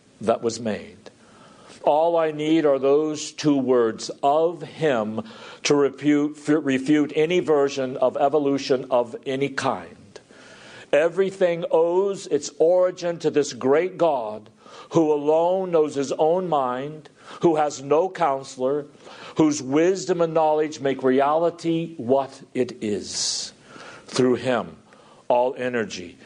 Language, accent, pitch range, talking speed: English, American, 120-155 Hz, 120 wpm